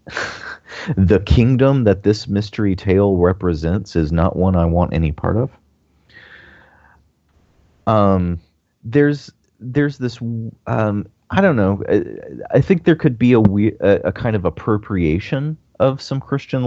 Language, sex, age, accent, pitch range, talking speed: English, male, 30-49, American, 80-100 Hz, 140 wpm